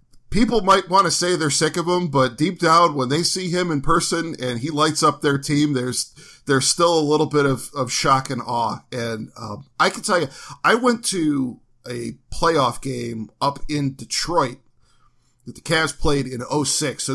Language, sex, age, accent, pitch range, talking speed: English, male, 40-59, American, 125-155 Hz, 200 wpm